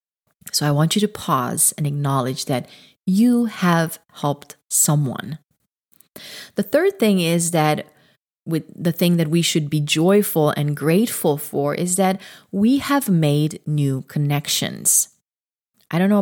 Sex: female